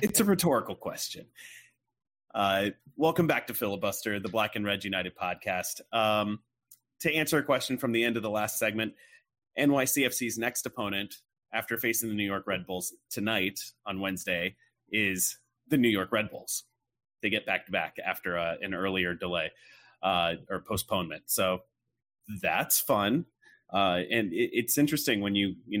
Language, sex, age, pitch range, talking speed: English, male, 30-49, 95-125 Hz, 165 wpm